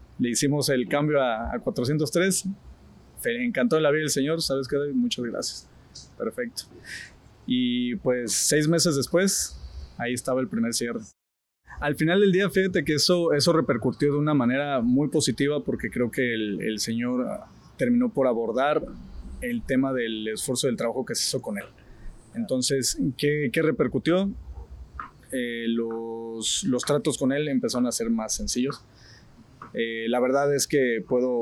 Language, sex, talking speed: Spanish, male, 160 wpm